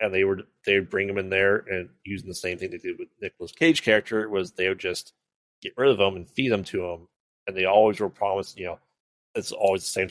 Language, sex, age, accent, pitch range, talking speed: English, male, 30-49, American, 90-120 Hz, 250 wpm